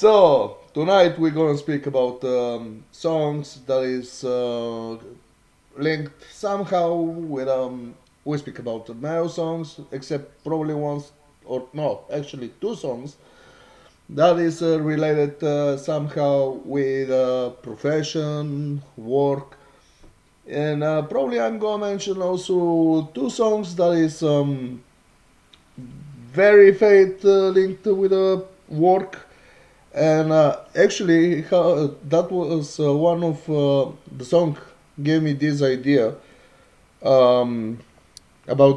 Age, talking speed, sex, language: 30-49, 120 wpm, male, English